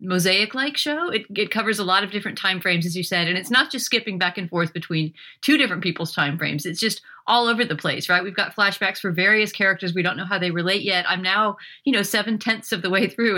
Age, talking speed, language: 40-59, 255 wpm, English